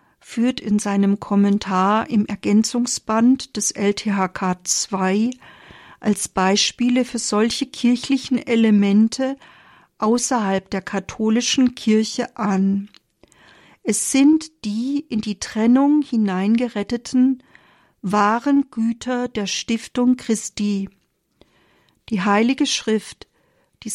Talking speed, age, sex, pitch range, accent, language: 90 wpm, 40-59, female, 205-245 Hz, German, German